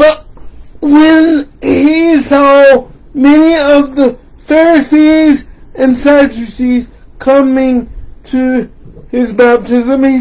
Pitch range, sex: 255-295 Hz, male